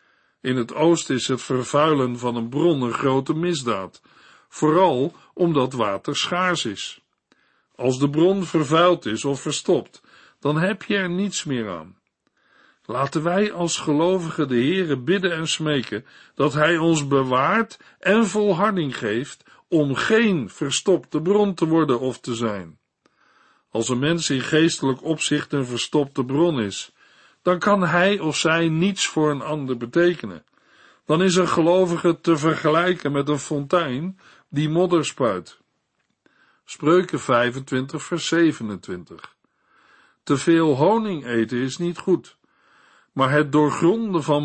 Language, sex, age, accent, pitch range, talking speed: Dutch, male, 50-69, Dutch, 130-175 Hz, 140 wpm